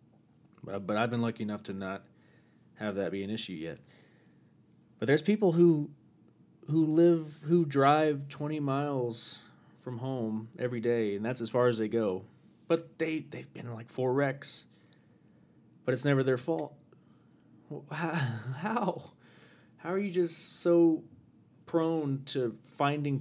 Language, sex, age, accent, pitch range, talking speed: English, male, 30-49, American, 105-150 Hz, 150 wpm